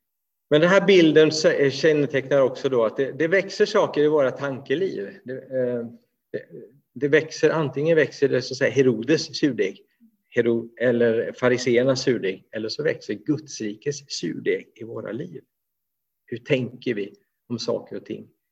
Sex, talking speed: male, 150 wpm